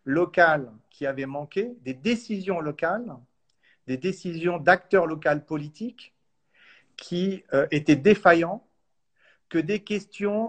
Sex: male